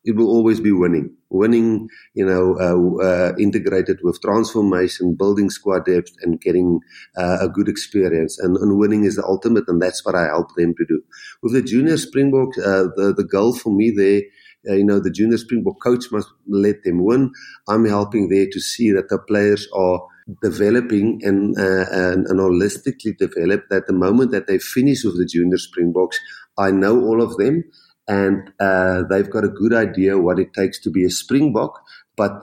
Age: 50-69